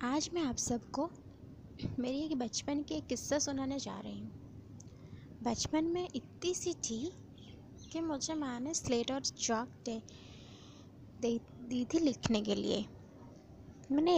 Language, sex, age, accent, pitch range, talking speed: Hindi, female, 20-39, native, 230-295 Hz, 140 wpm